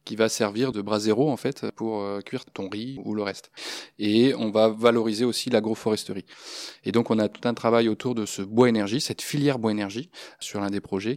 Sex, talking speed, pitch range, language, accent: male, 225 wpm, 105-125 Hz, French, French